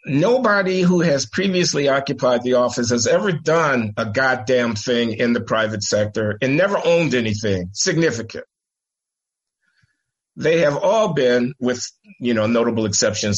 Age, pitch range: 50-69, 125-205 Hz